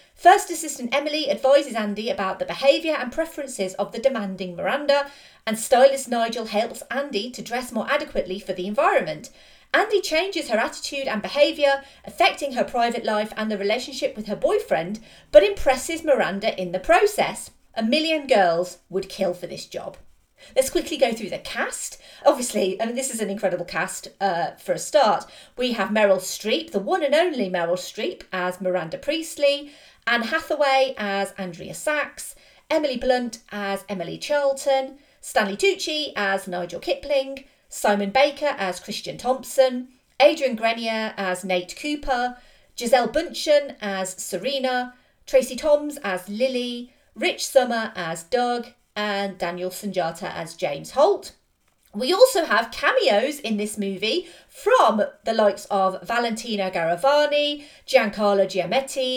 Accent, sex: British, female